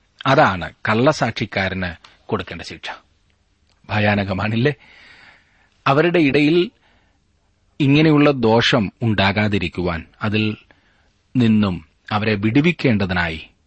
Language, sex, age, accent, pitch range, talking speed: Malayalam, male, 30-49, native, 95-125 Hz, 55 wpm